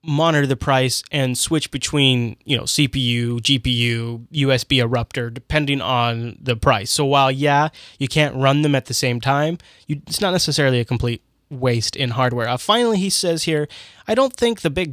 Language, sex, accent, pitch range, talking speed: English, male, American, 125-165 Hz, 180 wpm